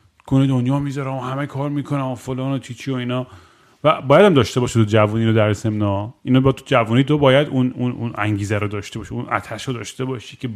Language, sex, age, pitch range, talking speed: Persian, male, 30-49, 110-135 Hz, 220 wpm